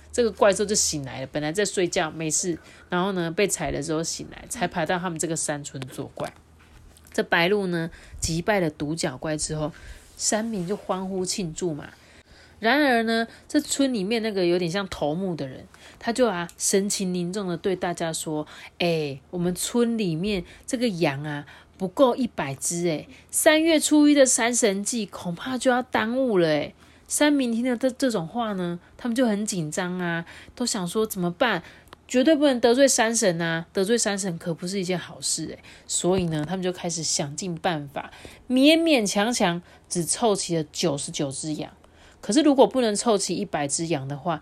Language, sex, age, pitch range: Chinese, female, 30-49, 165-220 Hz